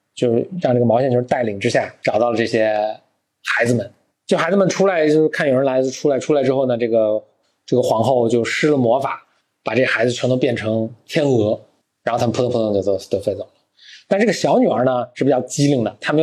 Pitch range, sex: 115-135 Hz, male